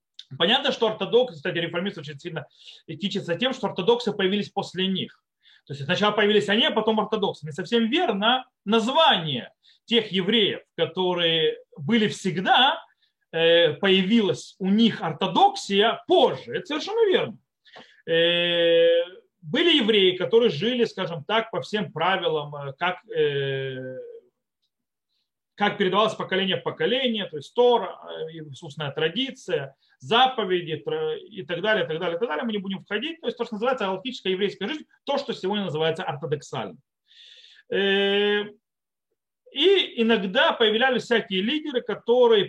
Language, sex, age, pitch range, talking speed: Russian, male, 30-49, 180-250 Hz, 130 wpm